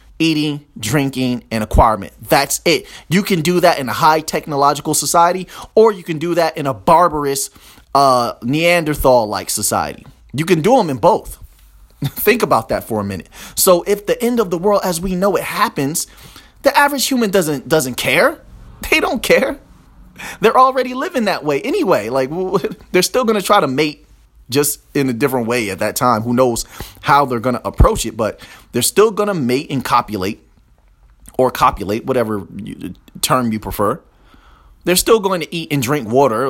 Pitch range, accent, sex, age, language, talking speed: 120-190 Hz, American, male, 30-49, English, 180 wpm